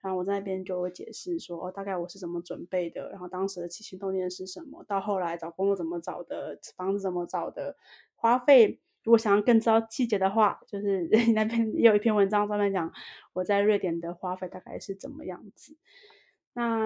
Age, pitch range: 20-39, 185-225 Hz